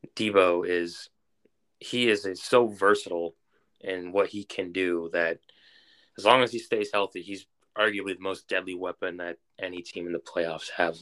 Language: English